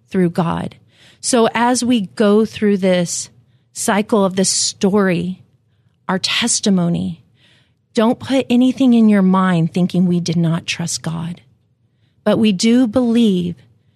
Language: English